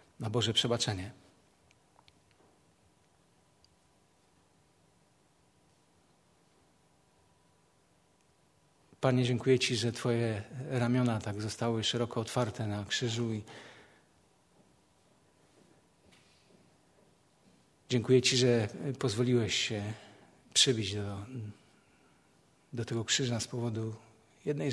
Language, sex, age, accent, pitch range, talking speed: Polish, male, 50-69, native, 110-130 Hz, 70 wpm